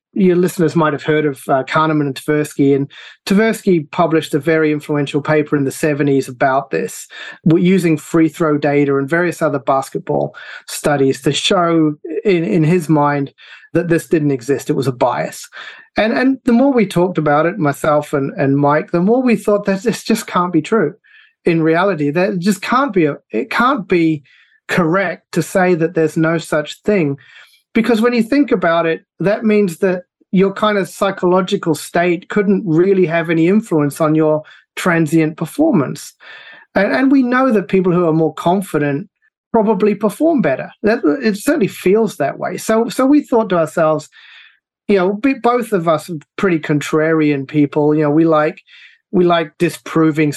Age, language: 30-49, English